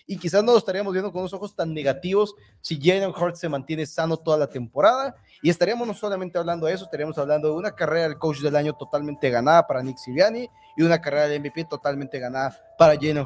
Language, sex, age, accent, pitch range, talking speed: Spanish, male, 30-49, Mexican, 145-185 Hz, 225 wpm